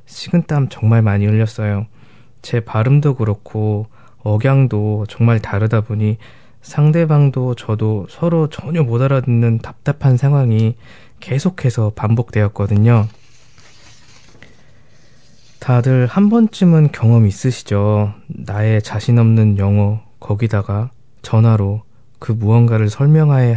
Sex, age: male, 20-39